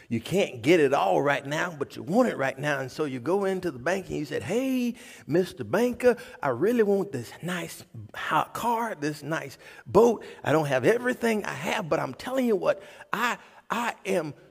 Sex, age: male, 40-59